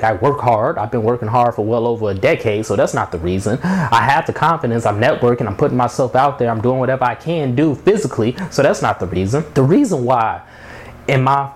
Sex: male